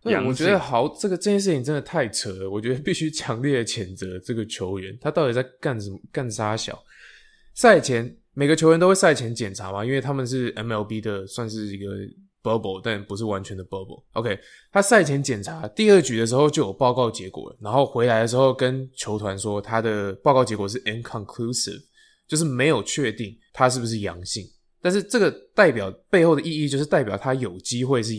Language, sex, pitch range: English, male, 105-145 Hz